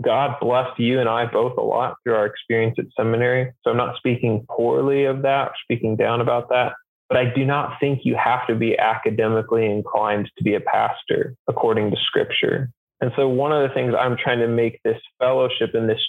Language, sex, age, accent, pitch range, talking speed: English, male, 20-39, American, 115-130 Hz, 210 wpm